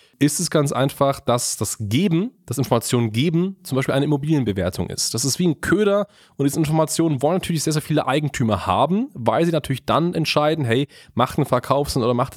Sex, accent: male, German